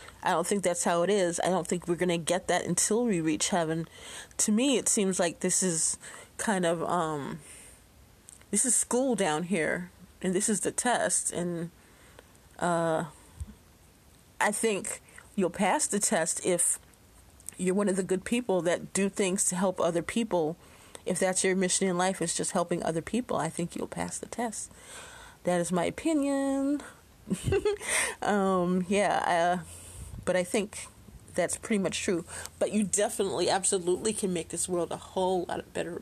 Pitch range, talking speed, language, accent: 170-210 Hz, 175 wpm, English, American